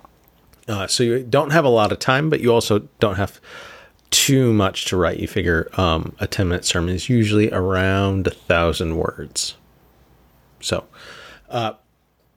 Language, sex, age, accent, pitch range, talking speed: English, male, 40-59, American, 95-125 Hz, 155 wpm